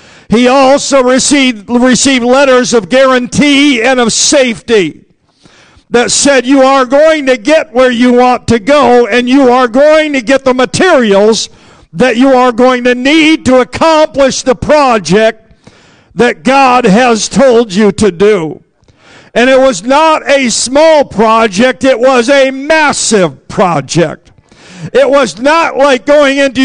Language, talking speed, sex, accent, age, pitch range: English, 145 wpm, male, American, 50-69, 235-275 Hz